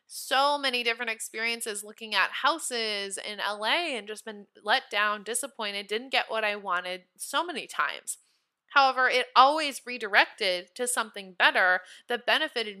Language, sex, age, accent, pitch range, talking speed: English, female, 20-39, American, 205-265 Hz, 150 wpm